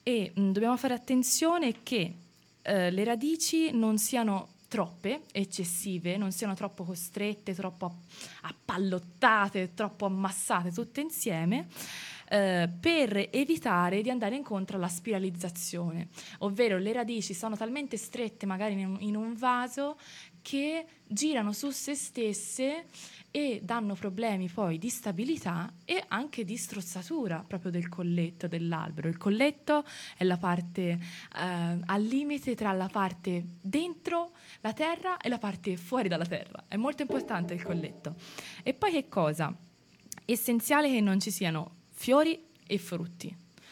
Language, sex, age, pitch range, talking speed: Italian, female, 20-39, 185-245 Hz, 135 wpm